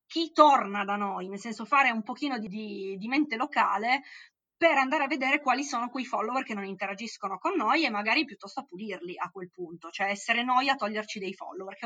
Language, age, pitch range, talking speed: Italian, 20-39, 195-240 Hz, 210 wpm